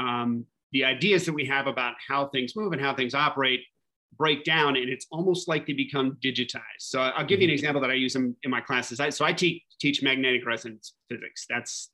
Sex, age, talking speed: male, 30-49, 225 wpm